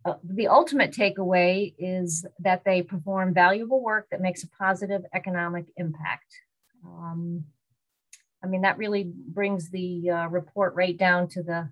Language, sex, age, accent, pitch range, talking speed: English, female, 40-59, American, 175-195 Hz, 150 wpm